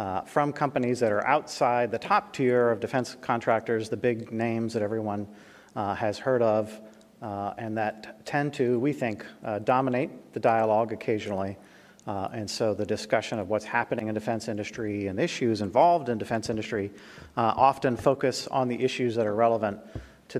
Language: English